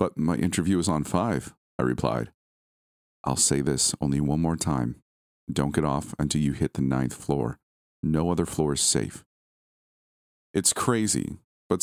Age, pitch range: 40-59, 65-90 Hz